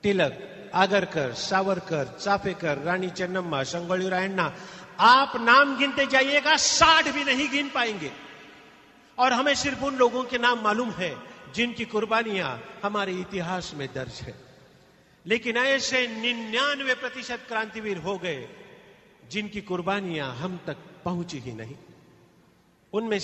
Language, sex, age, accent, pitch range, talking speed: Kannada, male, 50-69, native, 180-240 Hz, 125 wpm